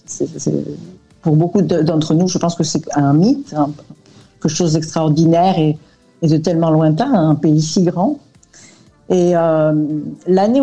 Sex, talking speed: female, 160 wpm